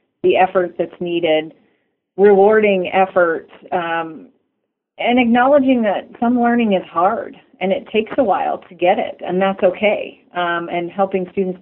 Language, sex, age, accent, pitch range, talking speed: English, female, 40-59, American, 175-215 Hz, 150 wpm